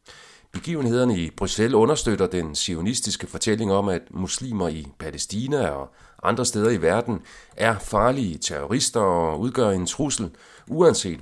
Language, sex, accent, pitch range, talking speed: Danish, male, native, 85-115 Hz, 135 wpm